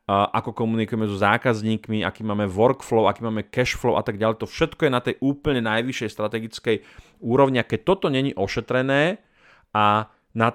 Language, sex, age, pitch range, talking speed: Slovak, male, 30-49, 105-125 Hz, 160 wpm